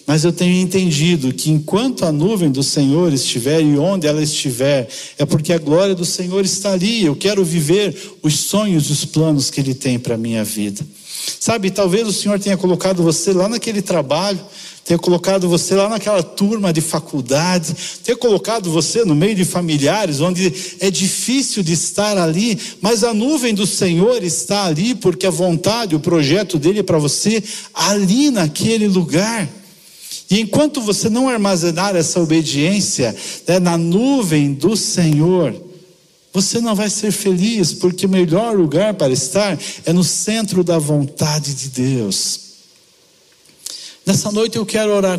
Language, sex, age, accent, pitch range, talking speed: Portuguese, male, 60-79, Brazilian, 160-200 Hz, 160 wpm